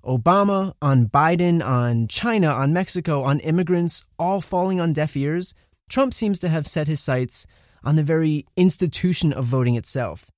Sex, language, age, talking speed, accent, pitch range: male, English, 30-49, 160 wpm, American, 125-170 Hz